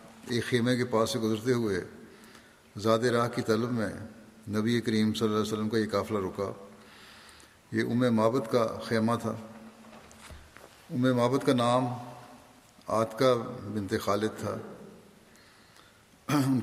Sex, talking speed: male, 135 wpm